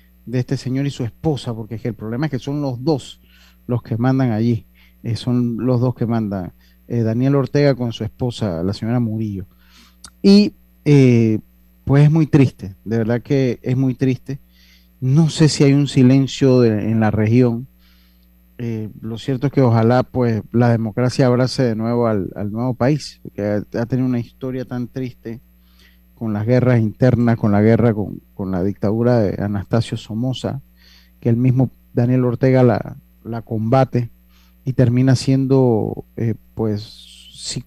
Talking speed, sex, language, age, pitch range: 170 wpm, male, Spanish, 30-49, 100-130 Hz